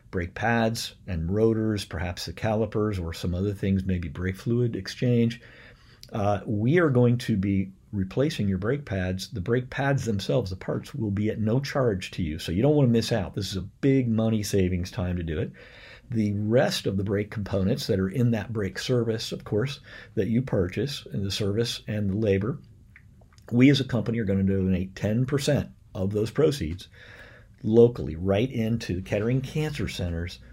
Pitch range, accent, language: 100-120 Hz, American, English